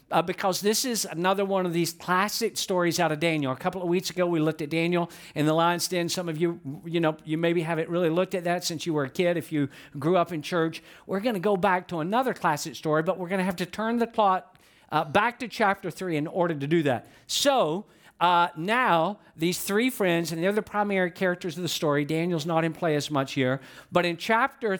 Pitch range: 155-195 Hz